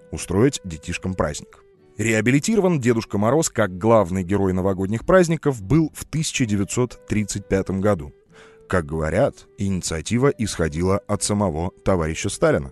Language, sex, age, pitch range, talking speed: Russian, male, 30-49, 85-120 Hz, 110 wpm